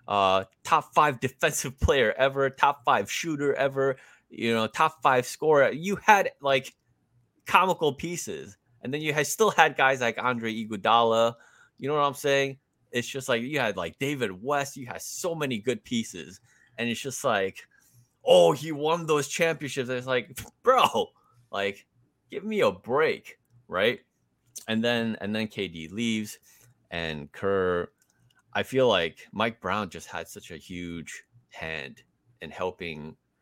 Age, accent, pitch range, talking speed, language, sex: 20-39, American, 95-135 Hz, 155 wpm, English, male